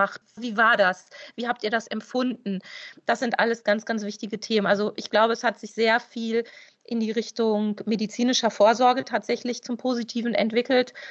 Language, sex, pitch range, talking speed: German, female, 205-240 Hz, 175 wpm